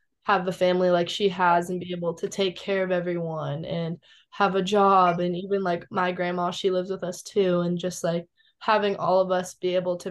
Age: 20-39